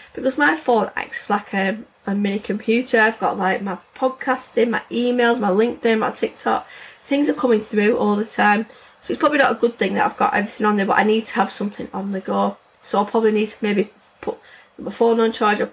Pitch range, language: 205-240 Hz, English